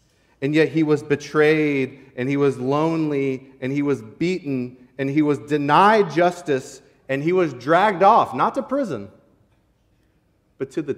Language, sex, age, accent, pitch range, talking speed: English, male, 30-49, American, 115-165 Hz, 160 wpm